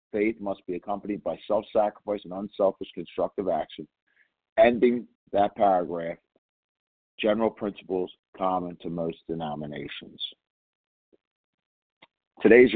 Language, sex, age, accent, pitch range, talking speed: English, male, 50-69, American, 90-110 Hz, 95 wpm